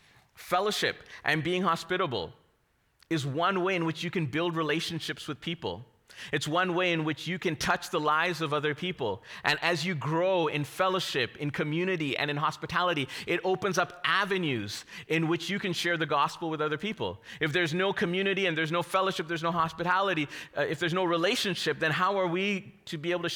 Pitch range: 140-175 Hz